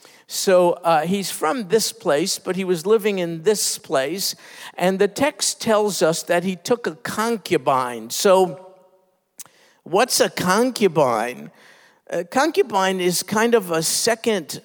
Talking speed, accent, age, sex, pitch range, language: 140 wpm, American, 50-69, male, 175-225 Hz, English